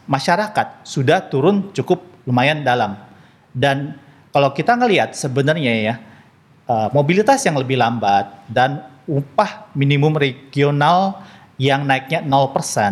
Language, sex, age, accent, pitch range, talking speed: Indonesian, male, 40-59, native, 130-165 Hz, 100 wpm